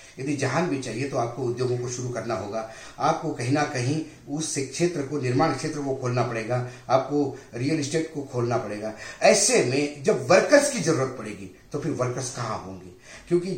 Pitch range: 120-155 Hz